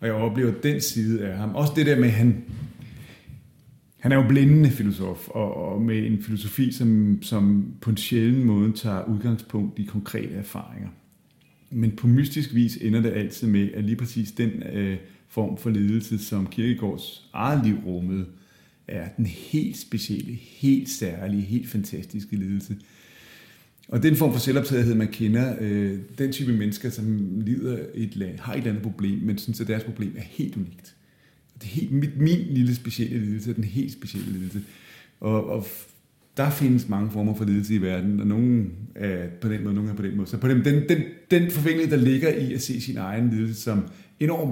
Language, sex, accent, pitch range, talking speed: Danish, male, native, 105-125 Hz, 190 wpm